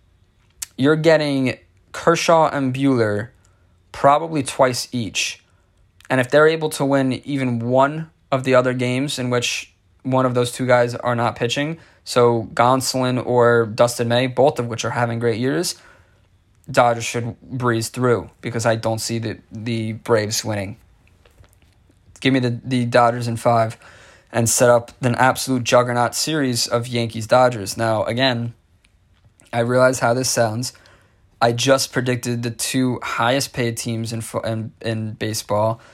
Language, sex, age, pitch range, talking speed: English, male, 20-39, 110-125 Hz, 150 wpm